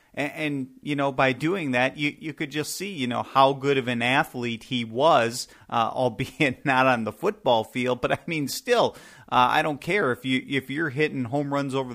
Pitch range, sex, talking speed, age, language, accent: 115-135 Hz, male, 215 wpm, 40-59, English, American